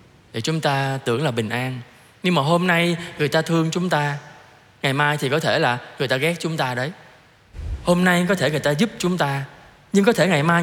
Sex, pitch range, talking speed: male, 140-210 Hz, 235 wpm